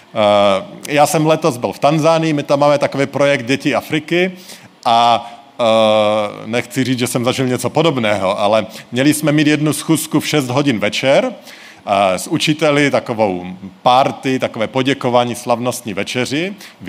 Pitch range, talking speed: 120-145 Hz, 140 wpm